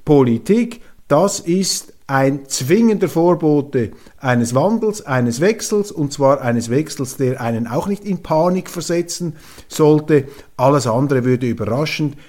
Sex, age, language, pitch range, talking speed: male, 50-69, German, 130-170 Hz, 125 wpm